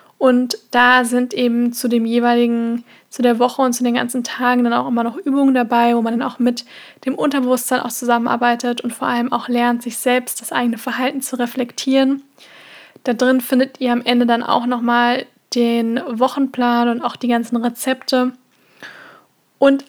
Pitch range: 235-255 Hz